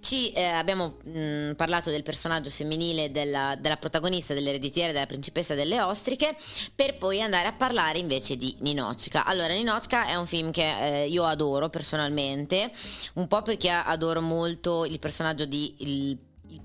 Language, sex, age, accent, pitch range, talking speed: Italian, female, 20-39, native, 145-180 Hz, 160 wpm